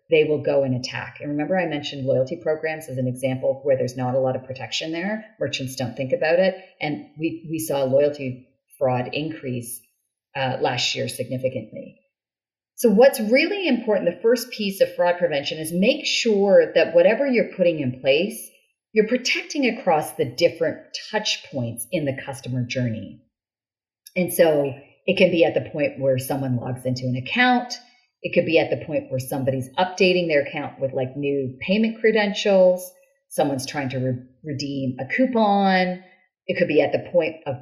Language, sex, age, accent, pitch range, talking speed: English, female, 40-59, American, 135-220 Hz, 175 wpm